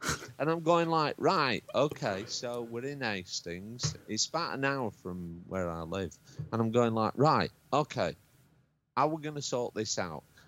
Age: 40-59